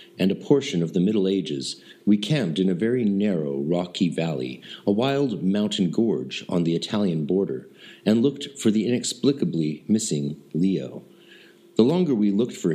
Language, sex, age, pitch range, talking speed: English, male, 50-69, 90-120 Hz, 165 wpm